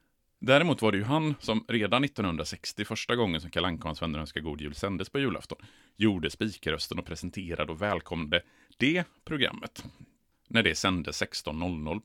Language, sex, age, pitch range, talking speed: Swedish, male, 30-49, 85-130 Hz, 150 wpm